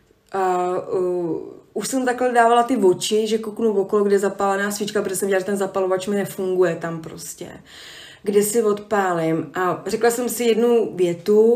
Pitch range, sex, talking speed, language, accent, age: 185-215 Hz, female, 175 wpm, Czech, native, 20-39